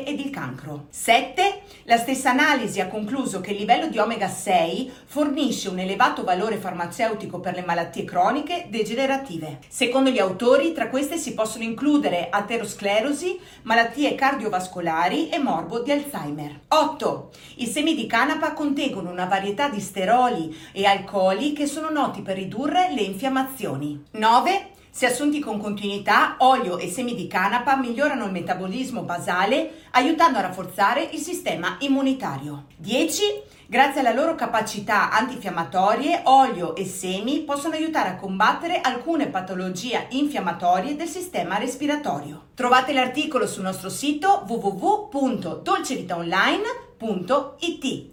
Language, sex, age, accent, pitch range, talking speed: Italian, female, 50-69, native, 190-285 Hz, 130 wpm